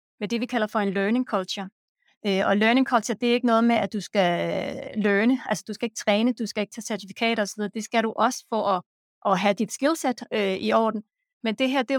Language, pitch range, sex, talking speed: Danish, 210-255 Hz, female, 240 wpm